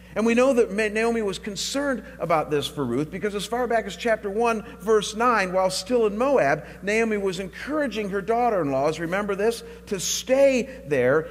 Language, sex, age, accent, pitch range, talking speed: English, male, 50-69, American, 180-235 Hz, 180 wpm